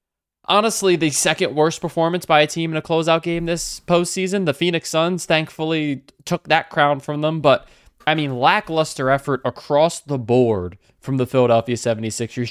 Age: 20-39